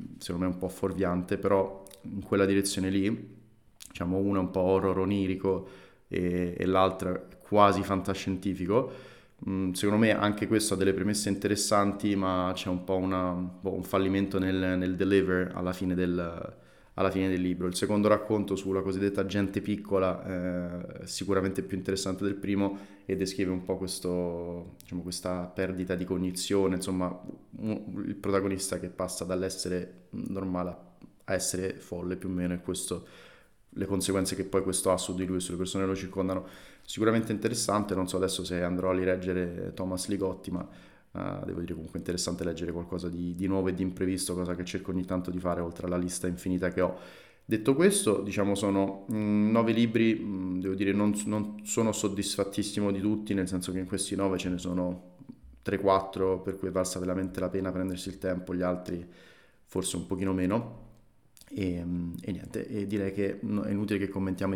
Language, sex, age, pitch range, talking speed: Italian, male, 20-39, 90-100 Hz, 180 wpm